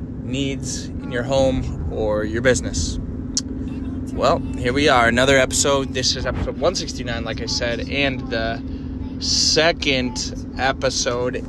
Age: 20-39